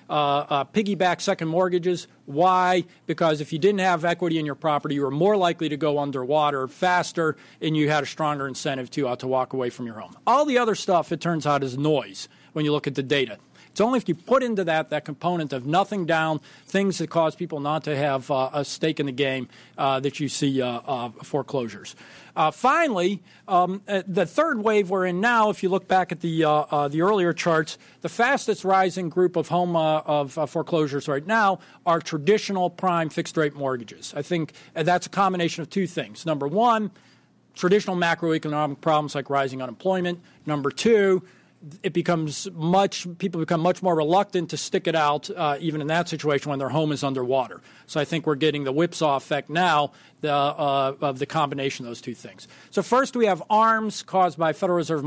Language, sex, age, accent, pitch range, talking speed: English, male, 40-59, American, 145-180 Hz, 205 wpm